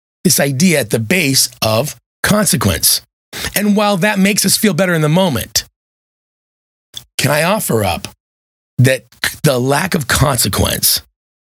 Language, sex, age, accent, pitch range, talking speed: English, male, 30-49, American, 100-150 Hz, 135 wpm